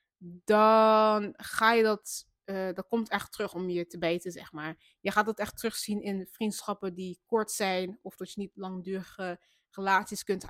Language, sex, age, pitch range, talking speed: Dutch, female, 20-39, 180-210 Hz, 185 wpm